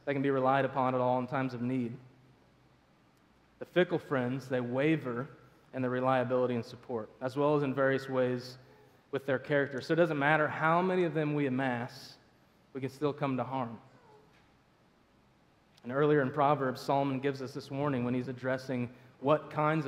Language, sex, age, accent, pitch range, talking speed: English, male, 30-49, American, 130-150 Hz, 180 wpm